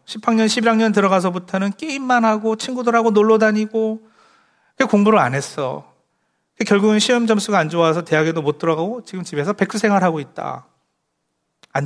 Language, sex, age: Korean, male, 40-59